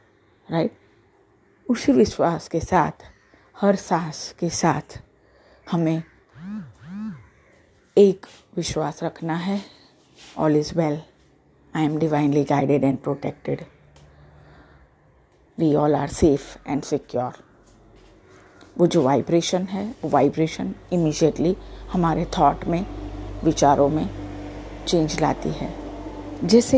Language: Hindi